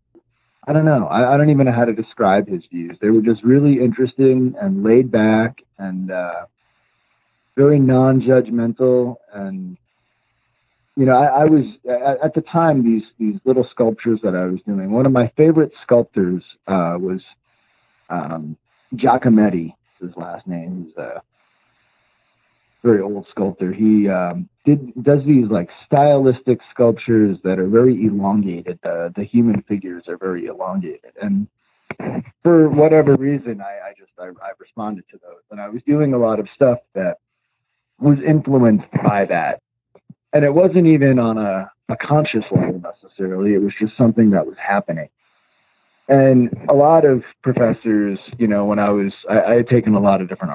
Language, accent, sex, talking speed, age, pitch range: English, American, male, 165 wpm, 40-59, 100-140 Hz